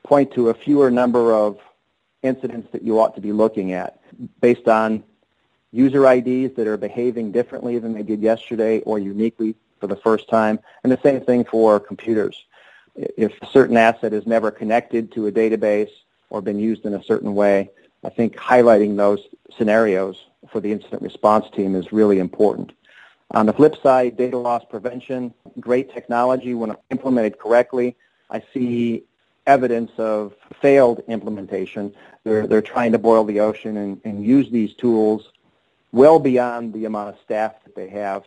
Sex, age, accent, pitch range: male, 40-59, American, 105-125 Hz